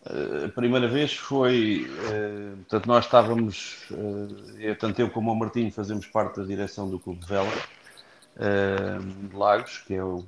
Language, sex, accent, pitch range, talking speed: Portuguese, male, Portuguese, 100-120 Hz, 170 wpm